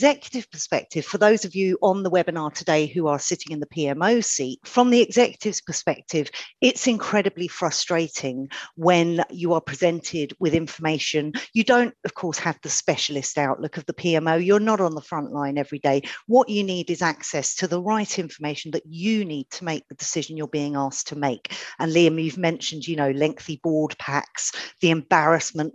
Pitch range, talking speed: 145-185 Hz, 190 wpm